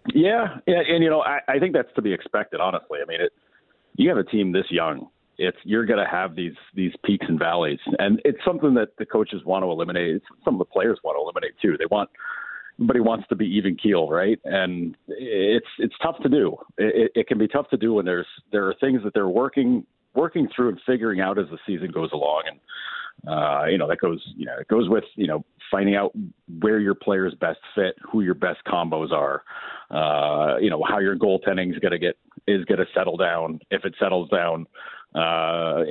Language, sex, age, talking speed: English, male, 40-59, 225 wpm